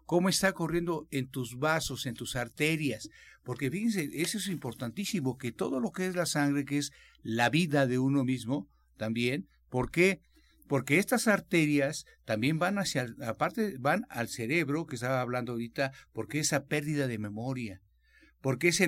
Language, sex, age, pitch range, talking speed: Spanish, male, 60-79, 120-155 Hz, 165 wpm